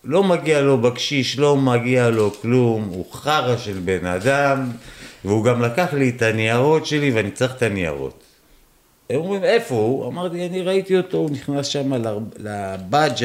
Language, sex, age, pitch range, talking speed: Hebrew, male, 50-69, 110-175 Hz, 165 wpm